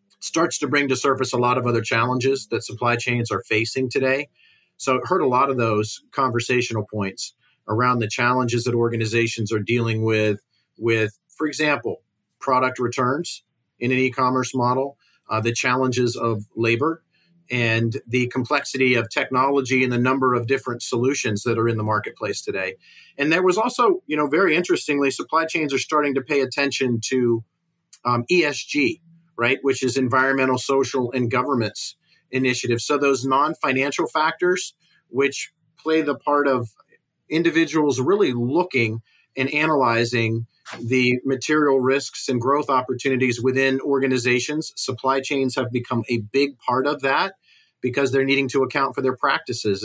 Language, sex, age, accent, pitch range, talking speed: English, male, 40-59, American, 115-140 Hz, 155 wpm